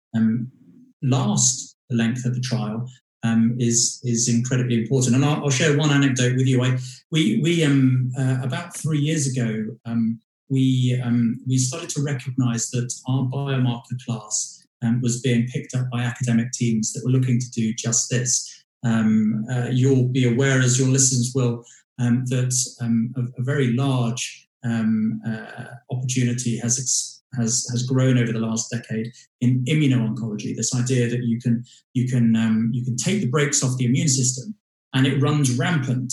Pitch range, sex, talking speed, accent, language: 120-130 Hz, male, 175 wpm, British, English